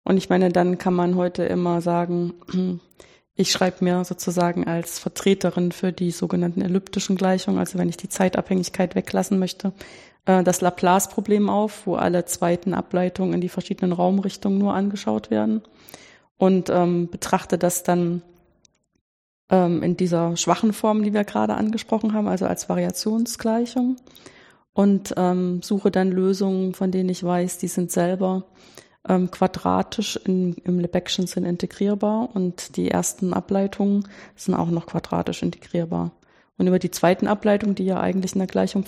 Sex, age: female, 20-39